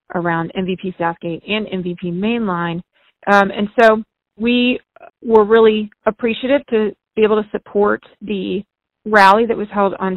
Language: English